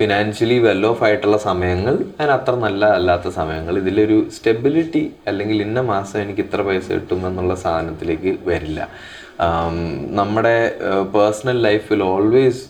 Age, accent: 20-39, Indian